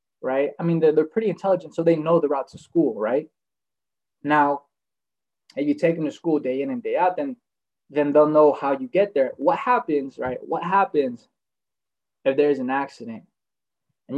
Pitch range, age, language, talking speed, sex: 150-180 Hz, 20-39, English, 195 wpm, male